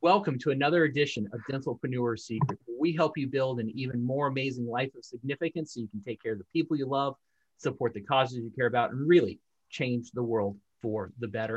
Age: 30-49